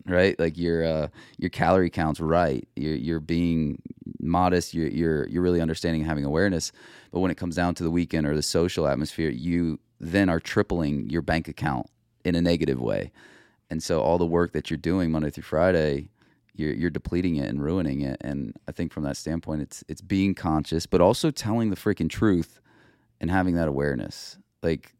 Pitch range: 80-95 Hz